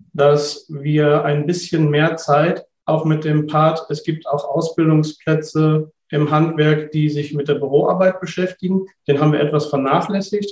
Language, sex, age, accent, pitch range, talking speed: German, male, 40-59, German, 150-170 Hz, 155 wpm